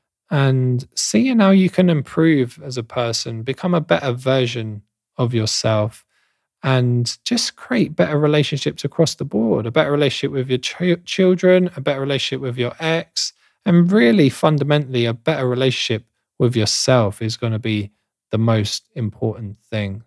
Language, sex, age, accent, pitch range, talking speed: English, male, 20-39, British, 110-145 Hz, 155 wpm